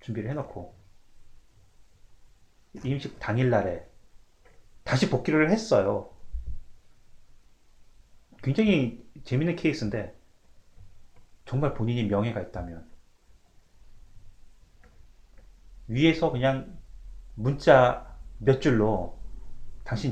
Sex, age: male, 30-49